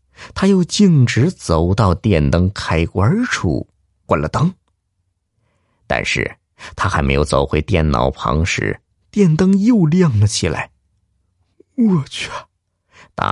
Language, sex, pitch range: Chinese, male, 85-115 Hz